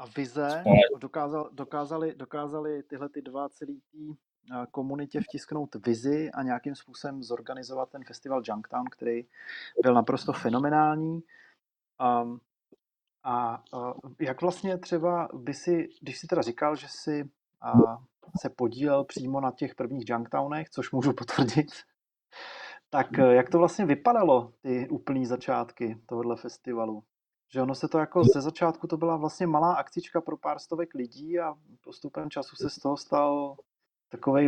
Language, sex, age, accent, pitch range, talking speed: Czech, male, 30-49, native, 130-155 Hz, 140 wpm